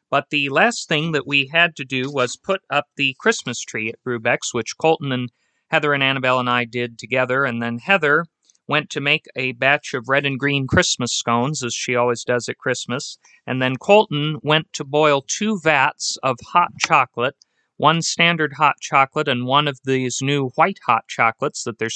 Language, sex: English, male